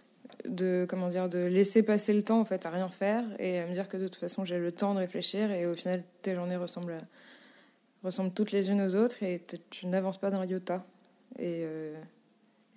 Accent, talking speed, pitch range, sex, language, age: French, 225 wpm, 175-220 Hz, female, French, 20-39